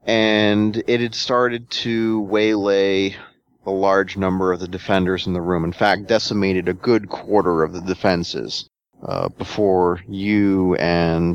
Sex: male